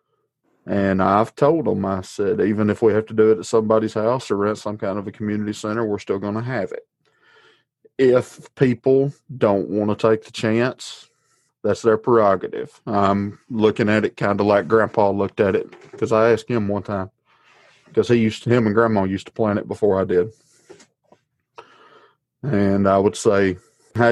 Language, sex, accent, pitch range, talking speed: English, male, American, 100-120 Hz, 190 wpm